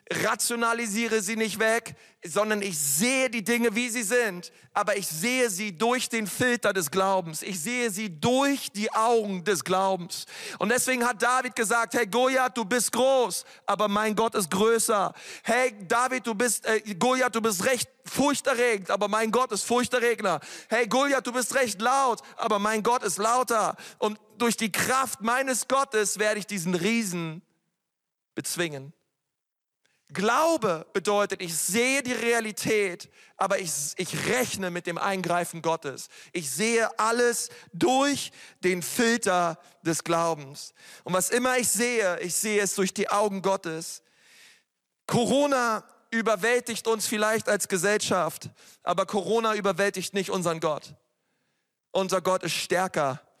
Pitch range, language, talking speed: 190-240 Hz, German, 145 wpm